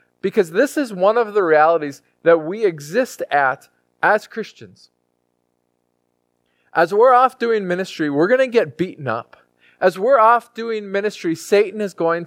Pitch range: 155-230 Hz